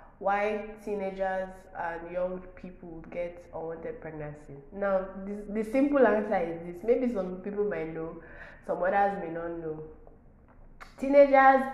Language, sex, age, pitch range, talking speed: English, female, 20-39, 160-190 Hz, 135 wpm